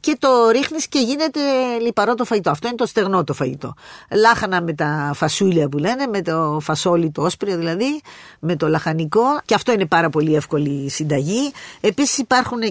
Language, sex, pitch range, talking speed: Greek, female, 170-245 Hz, 180 wpm